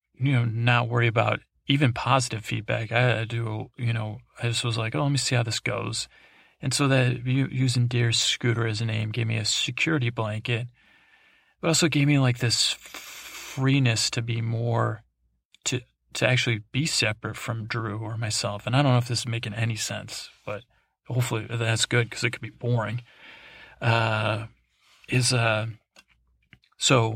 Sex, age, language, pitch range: male, 30-49, English, 115-125 Hz